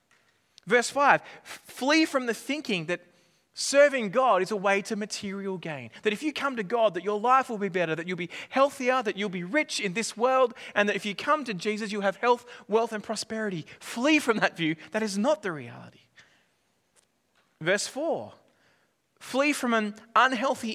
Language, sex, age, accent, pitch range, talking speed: English, male, 20-39, Australian, 185-250 Hz, 190 wpm